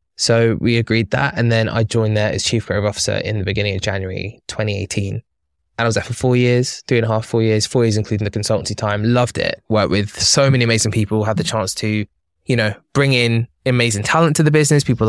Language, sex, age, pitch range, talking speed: English, male, 20-39, 105-125 Hz, 240 wpm